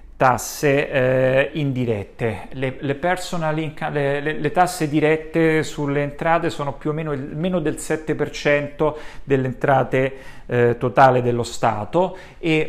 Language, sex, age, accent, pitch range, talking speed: Italian, male, 40-59, native, 120-150 Hz, 130 wpm